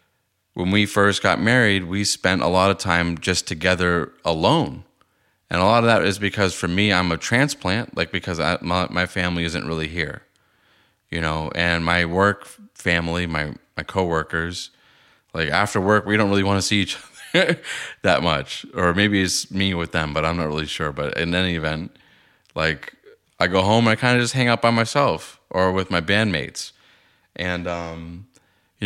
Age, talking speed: 30-49, 185 wpm